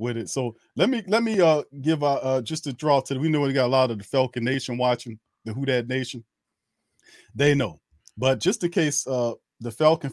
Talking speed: 230 wpm